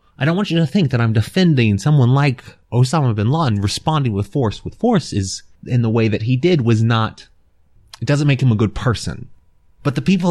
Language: English